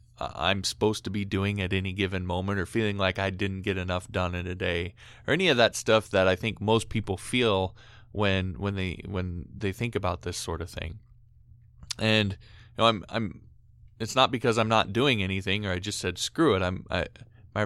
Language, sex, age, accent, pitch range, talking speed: English, male, 20-39, American, 95-110 Hz, 215 wpm